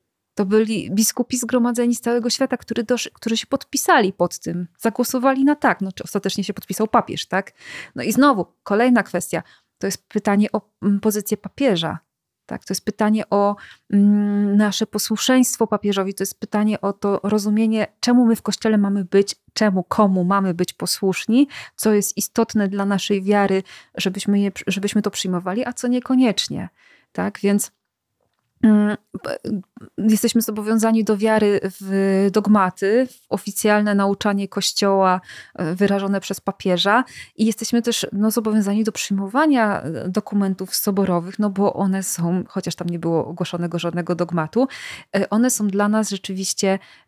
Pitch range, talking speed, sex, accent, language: 195-225 Hz, 145 wpm, female, native, Polish